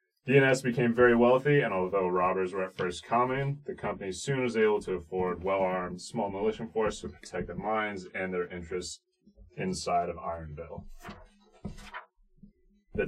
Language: English